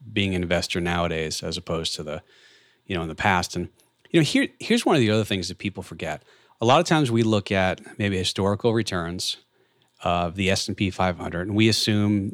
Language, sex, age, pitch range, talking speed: English, male, 30-49, 95-115 Hz, 210 wpm